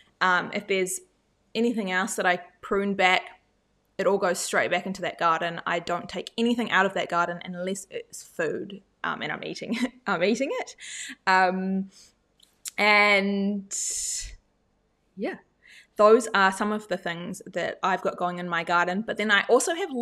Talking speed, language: 165 wpm, English